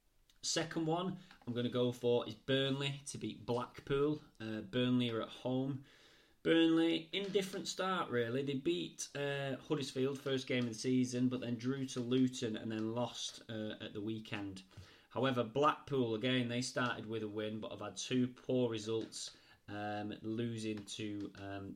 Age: 30-49